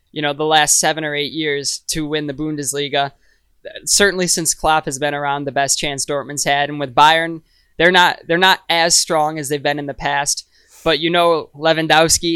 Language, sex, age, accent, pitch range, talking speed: English, male, 20-39, American, 145-170 Hz, 200 wpm